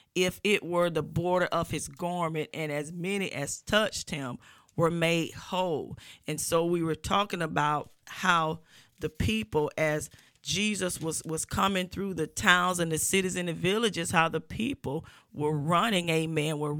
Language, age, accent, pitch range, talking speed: English, 40-59, American, 160-185 Hz, 170 wpm